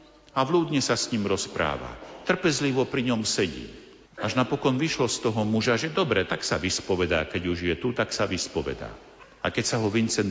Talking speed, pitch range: 190 wpm, 105-130 Hz